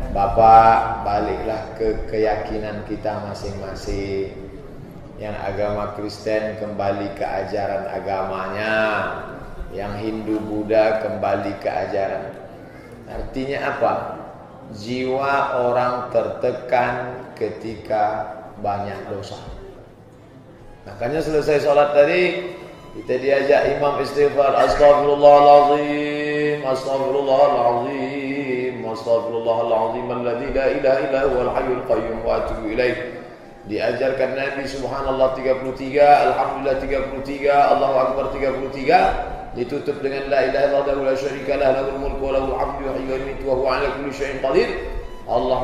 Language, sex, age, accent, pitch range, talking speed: Indonesian, male, 20-39, native, 110-140 Hz, 70 wpm